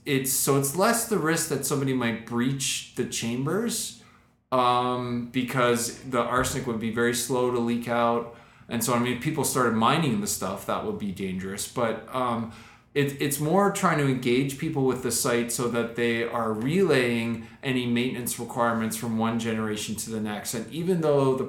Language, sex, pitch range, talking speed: English, male, 115-140 Hz, 180 wpm